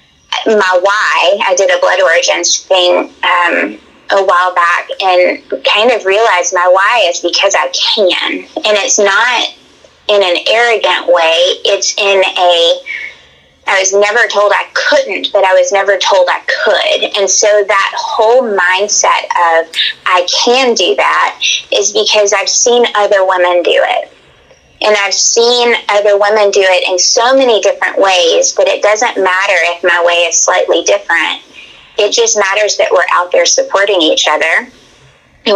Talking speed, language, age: 160 wpm, English, 20-39